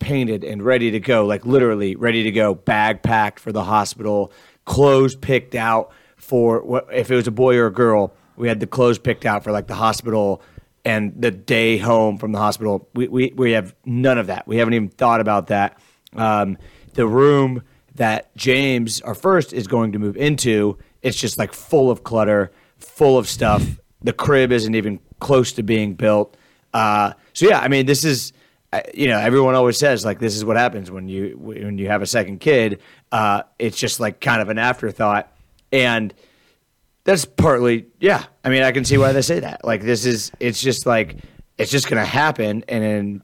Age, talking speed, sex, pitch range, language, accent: 30-49, 205 wpm, male, 105-130 Hz, English, American